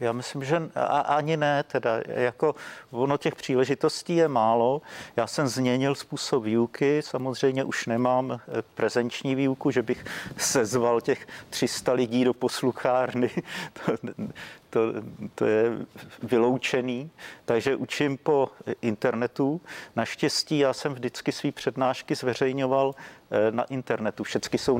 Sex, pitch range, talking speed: male, 115-135 Hz, 120 wpm